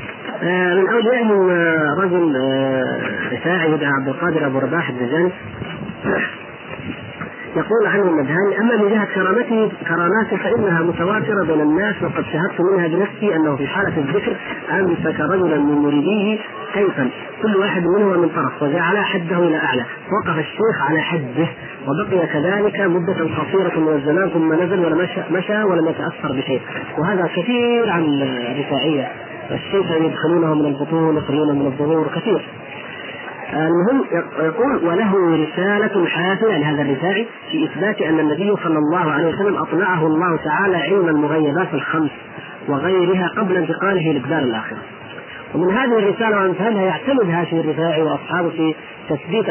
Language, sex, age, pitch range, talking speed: Arabic, male, 40-59, 150-195 Hz, 135 wpm